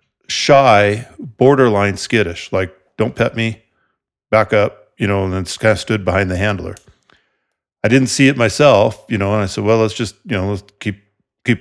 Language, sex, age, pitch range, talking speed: English, male, 50-69, 95-110 Hz, 190 wpm